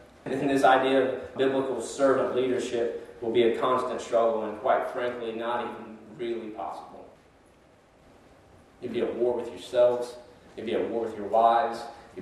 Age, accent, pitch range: 30-49, American, 120-150 Hz